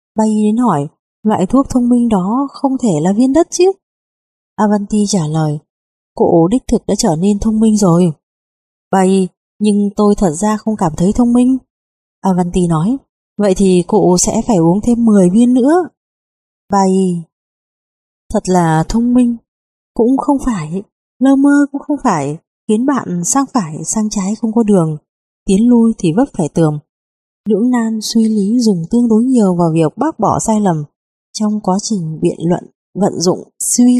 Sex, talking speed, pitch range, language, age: female, 175 wpm, 180-240 Hz, Vietnamese, 20-39